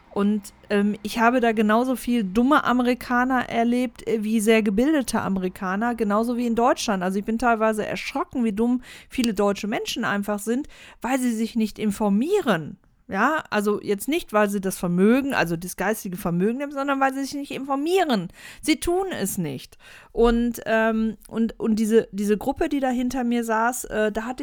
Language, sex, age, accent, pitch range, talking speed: German, female, 40-59, German, 205-245 Hz, 180 wpm